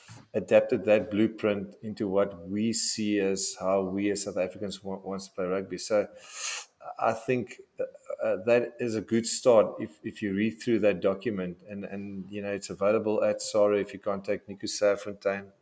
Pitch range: 95-110 Hz